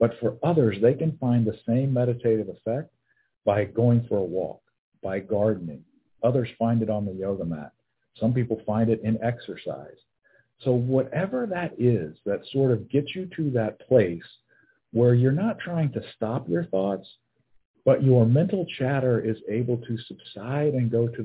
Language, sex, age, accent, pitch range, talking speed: English, male, 50-69, American, 110-140 Hz, 170 wpm